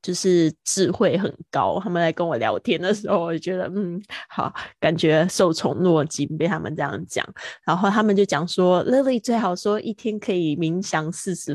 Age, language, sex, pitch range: 20-39, Chinese, female, 170-200 Hz